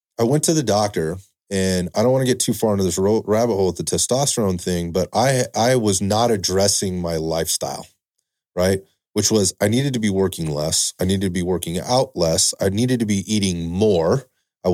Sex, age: male, 30-49